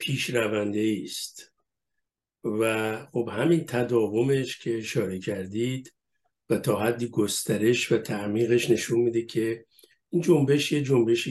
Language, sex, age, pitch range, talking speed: Persian, male, 60-79, 110-130 Hz, 115 wpm